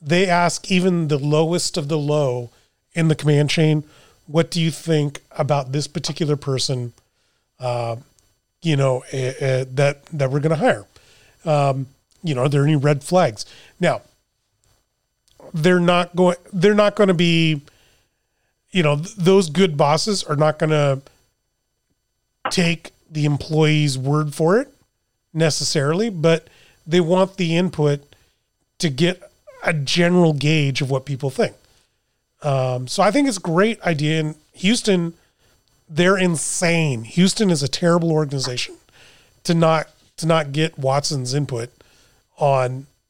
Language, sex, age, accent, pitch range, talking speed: English, male, 30-49, American, 135-175 Hz, 145 wpm